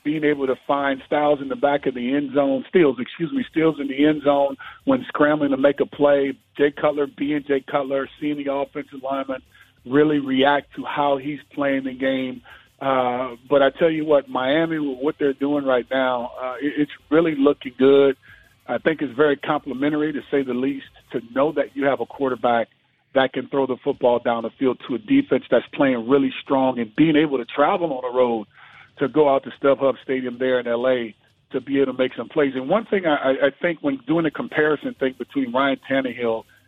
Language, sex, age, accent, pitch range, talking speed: English, male, 50-69, American, 130-150 Hz, 215 wpm